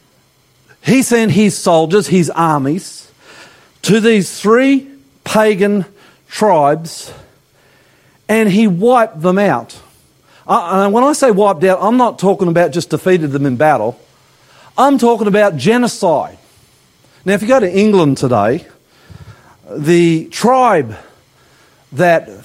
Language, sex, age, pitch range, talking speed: English, male, 50-69, 155-220 Hz, 120 wpm